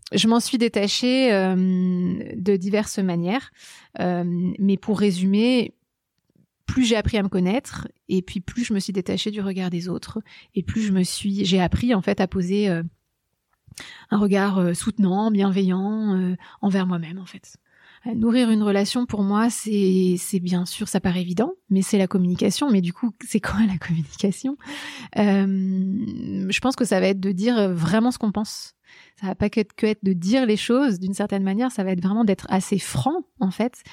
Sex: female